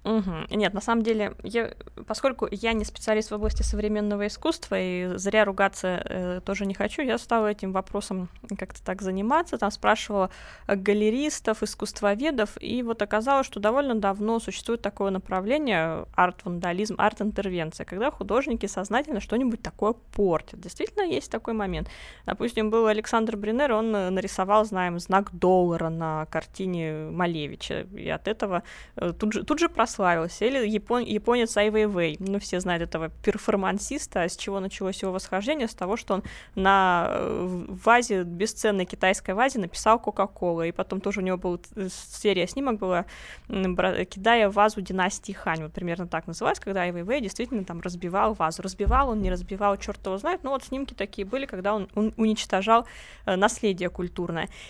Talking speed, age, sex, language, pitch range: 155 wpm, 20-39, female, Russian, 185-230 Hz